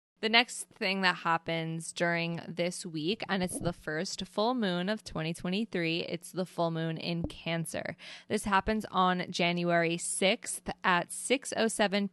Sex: female